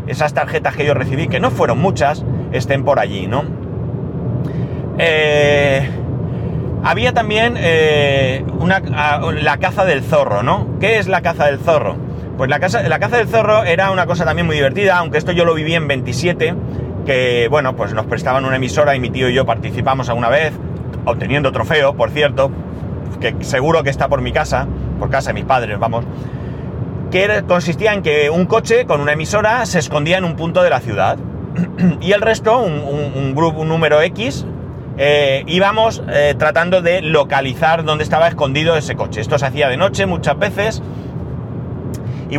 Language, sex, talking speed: Spanish, male, 175 wpm